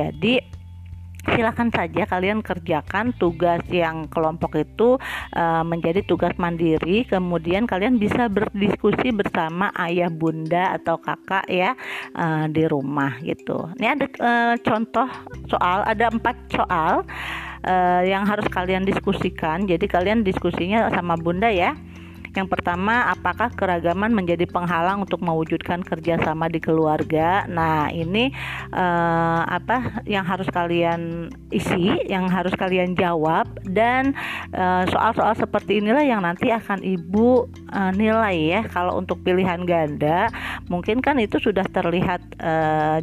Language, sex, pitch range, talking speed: Indonesian, female, 165-215 Hz, 120 wpm